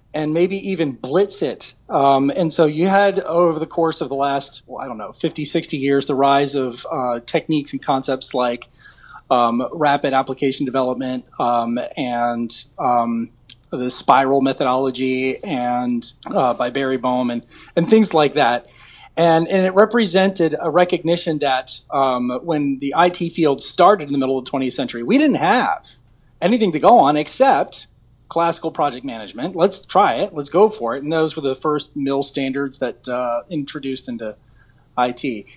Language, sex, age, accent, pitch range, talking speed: English, male, 30-49, American, 125-160 Hz, 170 wpm